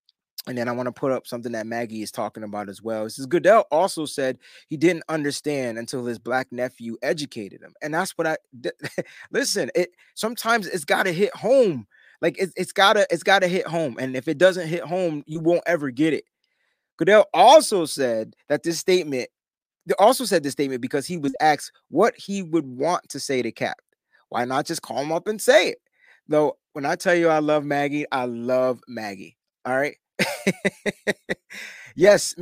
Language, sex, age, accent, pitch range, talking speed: English, male, 20-39, American, 135-180 Hz, 205 wpm